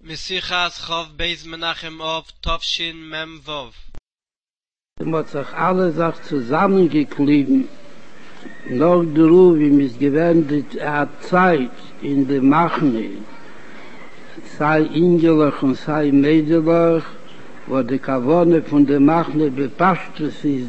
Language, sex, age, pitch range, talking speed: Hebrew, male, 60-79, 140-170 Hz, 90 wpm